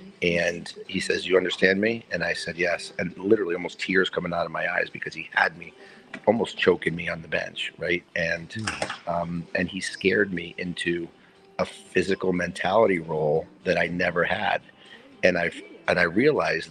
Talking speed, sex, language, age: 180 wpm, male, English, 40-59